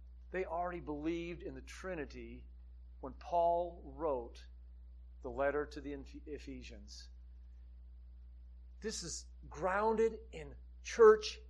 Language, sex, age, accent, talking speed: English, male, 50-69, American, 100 wpm